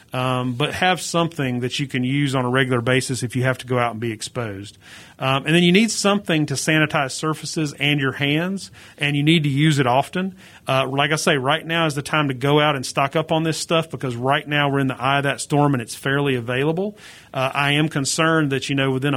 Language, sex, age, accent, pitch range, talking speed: English, male, 40-59, American, 130-155 Hz, 250 wpm